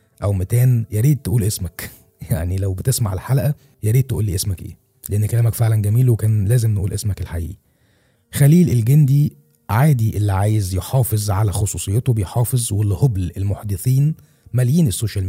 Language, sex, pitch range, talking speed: Arabic, male, 100-120 Hz, 155 wpm